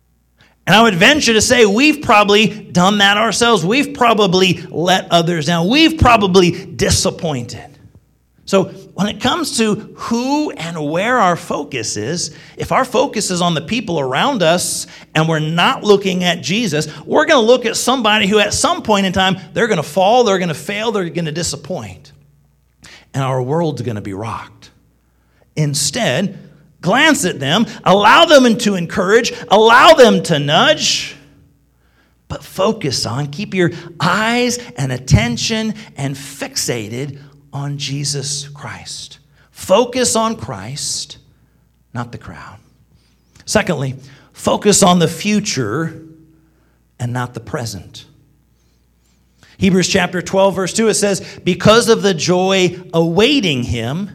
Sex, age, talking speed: male, 40-59, 145 wpm